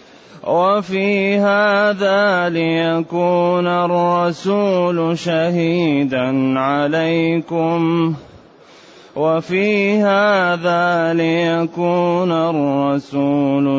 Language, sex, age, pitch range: Arabic, male, 30-49, 140-175 Hz